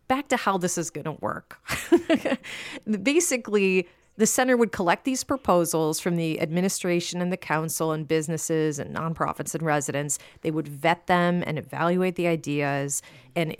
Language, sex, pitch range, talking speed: English, female, 155-210 Hz, 160 wpm